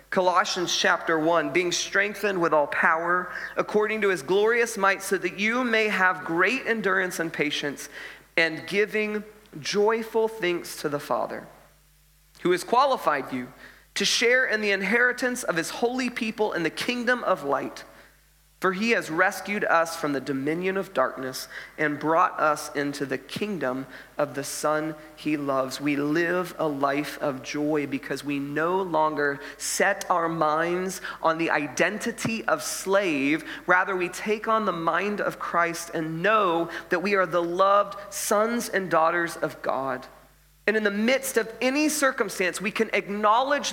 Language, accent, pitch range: English, American, 155-220 Hz